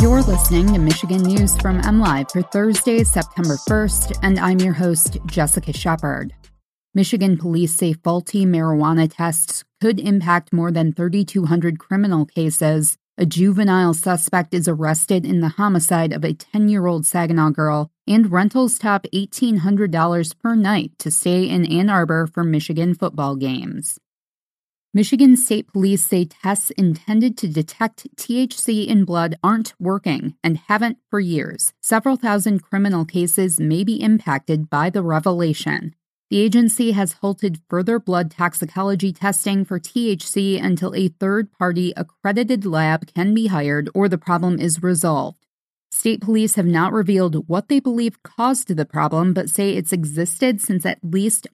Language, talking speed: English, 145 wpm